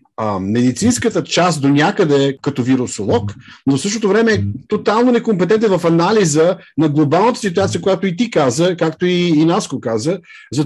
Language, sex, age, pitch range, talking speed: Bulgarian, male, 50-69, 155-200 Hz, 165 wpm